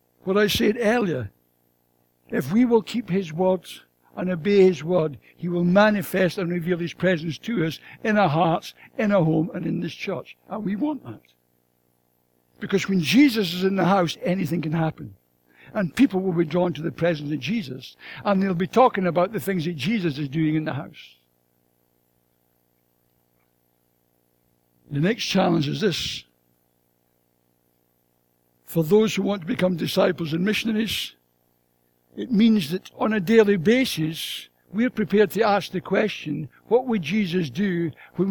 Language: English